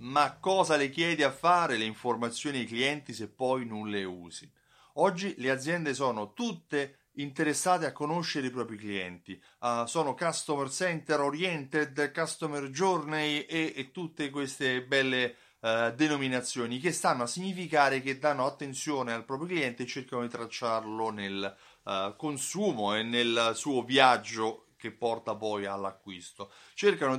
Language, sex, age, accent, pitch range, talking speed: Italian, male, 30-49, native, 115-155 Hz, 140 wpm